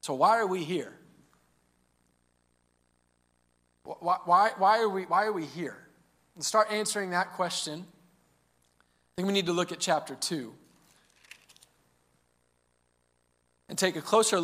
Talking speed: 110 wpm